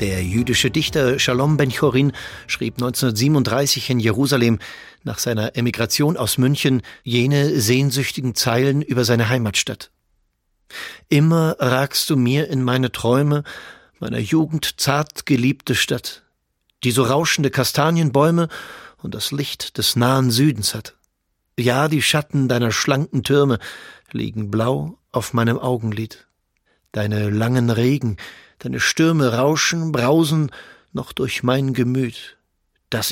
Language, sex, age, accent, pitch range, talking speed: German, male, 40-59, German, 115-140 Hz, 120 wpm